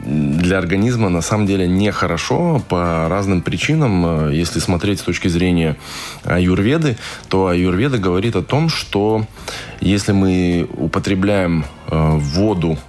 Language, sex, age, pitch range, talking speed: Russian, male, 20-39, 85-105 Hz, 115 wpm